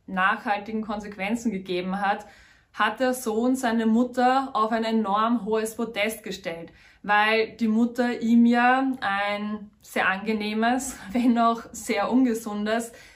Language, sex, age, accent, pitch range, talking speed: German, female, 20-39, German, 210-250 Hz, 125 wpm